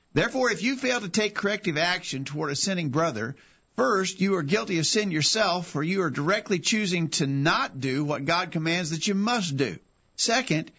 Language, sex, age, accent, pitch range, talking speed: English, male, 50-69, American, 165-210 Hz, 195 wpm